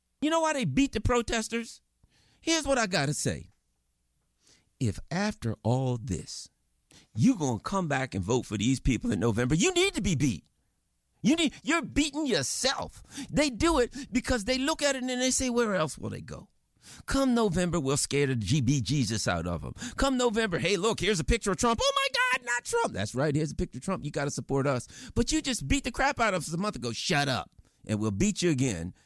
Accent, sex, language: American, male, English